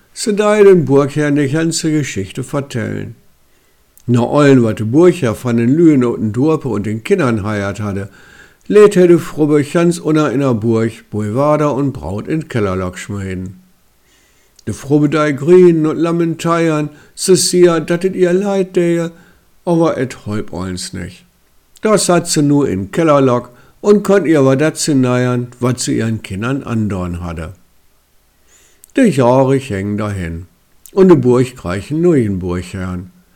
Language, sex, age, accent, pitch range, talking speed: German, male, 60-79, German, 110-165 Hz, 150 wpm